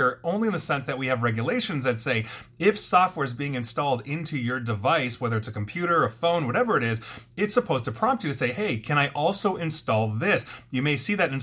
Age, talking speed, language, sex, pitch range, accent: 30-49, 235 wpm, English, male, 115-160 Hz, American